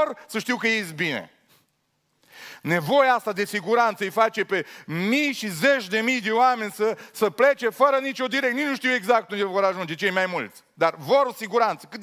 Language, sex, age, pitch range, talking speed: Romanian, male, 30-49, 160-215 Hz, 195 wpm